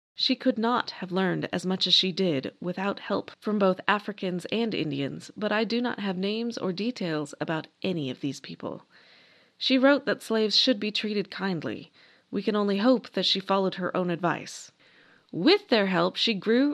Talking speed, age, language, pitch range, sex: 190 wpm, 30-49, English, 180-245 Hz, female